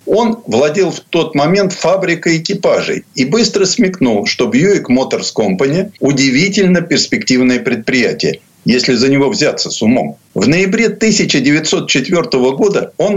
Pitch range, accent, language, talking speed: 135-190 Hz, native, Russian, 130 wpm